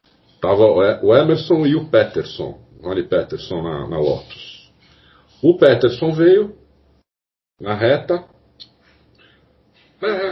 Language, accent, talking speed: Portuguese, Brazilian, 100 wpm